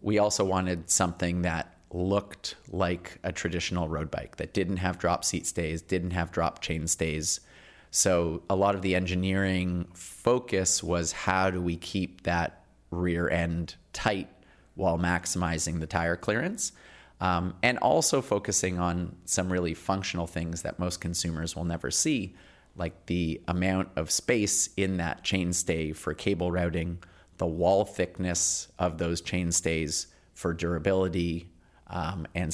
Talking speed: 150 wpm